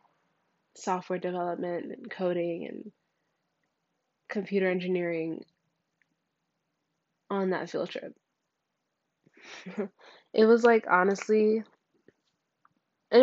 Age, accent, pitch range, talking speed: 20-39, American, 180-205 Hz, 75 wpm